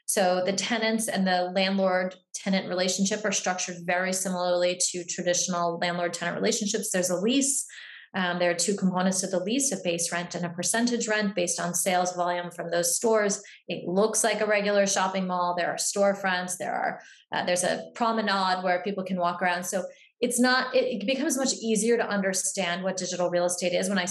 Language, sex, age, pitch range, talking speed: English, female, 20-39, 180-205 Hz, 195 wpm